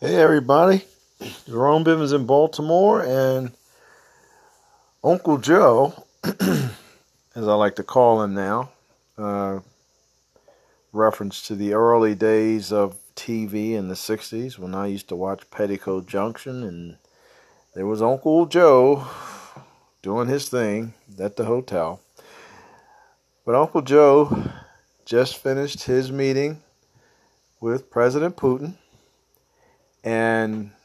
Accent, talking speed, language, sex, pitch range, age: American, 110 wpm, English, male, 110-145 Hz, 40-59